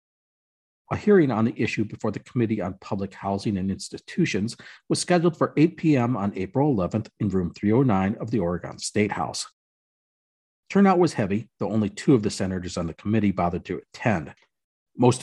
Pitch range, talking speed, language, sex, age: 95-130 Hz, 175 wpm, English, male, 40-59